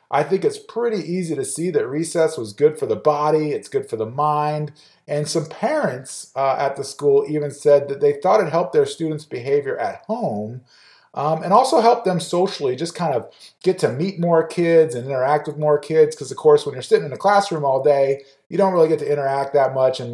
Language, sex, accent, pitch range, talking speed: English, male, American, 140-220 Hz, 230 wpm